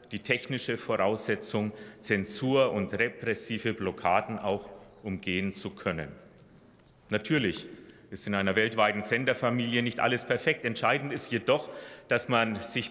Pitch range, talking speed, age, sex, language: 110-135 Hz, 120 wpm, 30-49, male, German